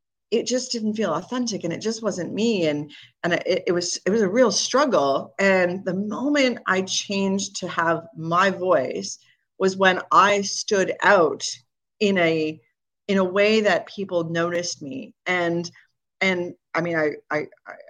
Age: 40-59